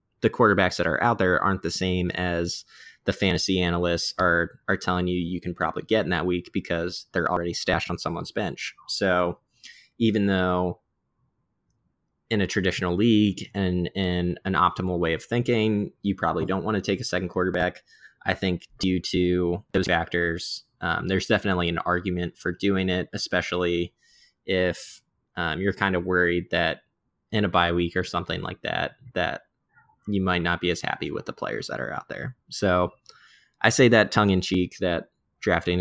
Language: English